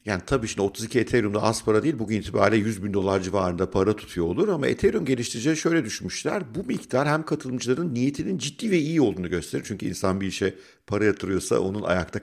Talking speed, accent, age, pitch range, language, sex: 195 wpm, native, 50-69, 95-130 Hz, Turkish, male